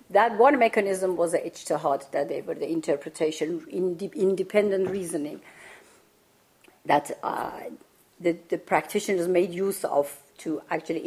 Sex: female